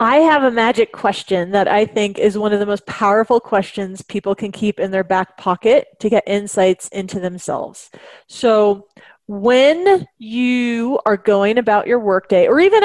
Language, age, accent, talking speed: English, 30-49, American, 175 wpm